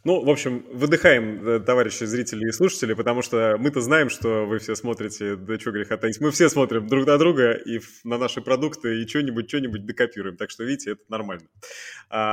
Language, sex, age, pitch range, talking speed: Russian, male, 20-39, 110-150 Hz, 195 wpm